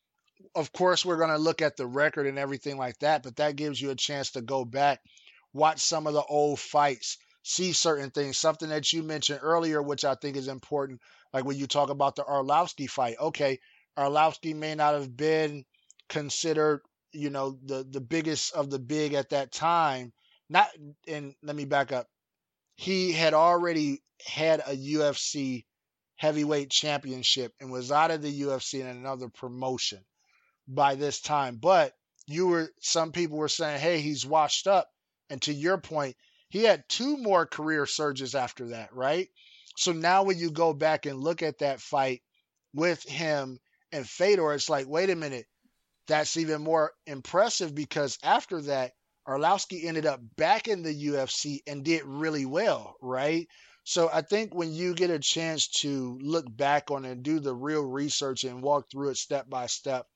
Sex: male